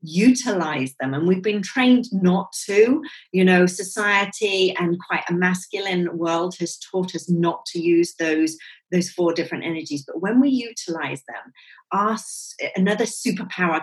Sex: female